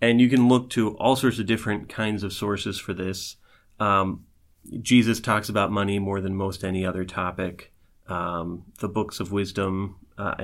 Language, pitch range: English, 90-110 Hz